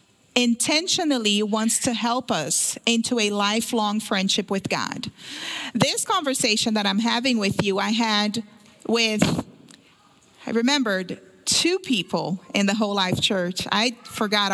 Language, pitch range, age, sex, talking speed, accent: English, 205-260 Hz, 40-59, female, 130 wpm, American